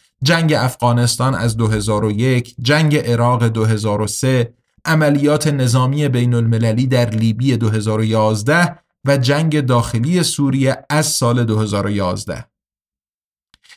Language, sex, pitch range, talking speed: Persian, male, 110-150 Hz, 90 wpm